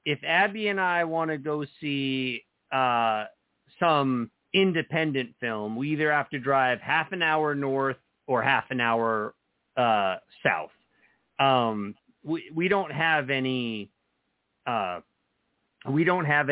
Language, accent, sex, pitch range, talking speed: English, American, male, 115-150 Hz, 135 wpm